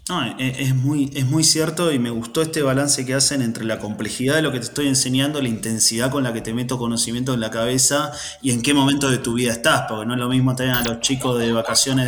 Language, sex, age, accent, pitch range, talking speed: Spanish, male, 20-39, Argentinian, 120-140 Hz, 250 wpm